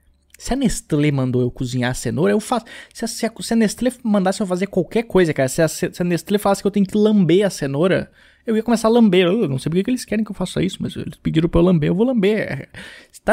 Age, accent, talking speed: 20-39, Brazilian, 275 wpm